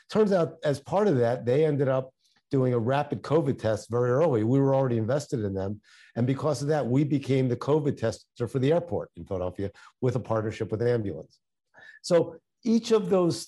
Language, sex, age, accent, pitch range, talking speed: English, male, 50-69, American, 115-145 Hz, 205 wpm